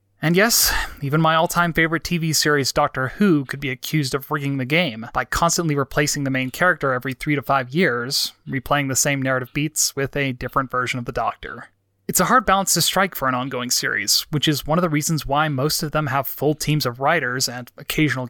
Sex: male